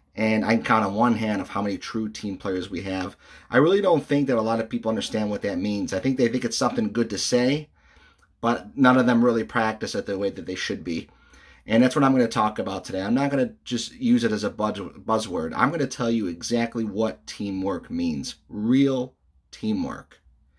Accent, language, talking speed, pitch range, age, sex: American, English, 235 wpm, 105-125 Hz, 30-49, male